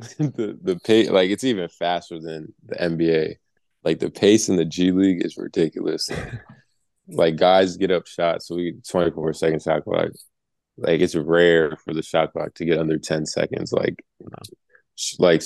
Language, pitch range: English, 80-95 Hz